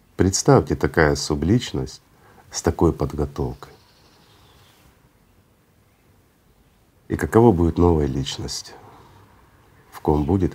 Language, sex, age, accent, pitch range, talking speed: Russian, male, 50-69, native, 75-95 Hz, 80 wpm